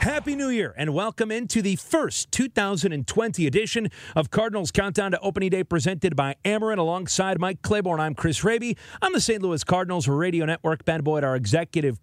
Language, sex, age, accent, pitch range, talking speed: English, male, 40-59, American, 135-185 Hz, 180 wpm